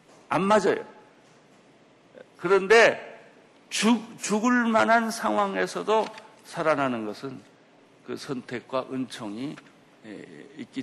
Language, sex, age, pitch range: Korean, male, 60-79, 125-190 Hz